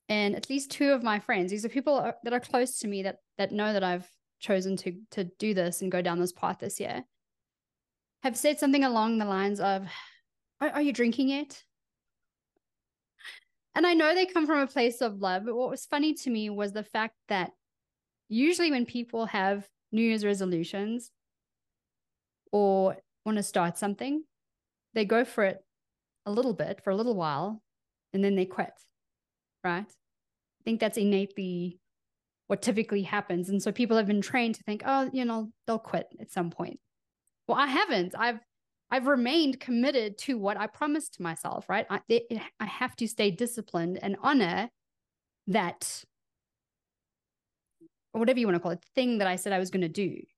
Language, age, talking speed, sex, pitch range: English, 20-39, 180 wpm, female, 195-260 Hz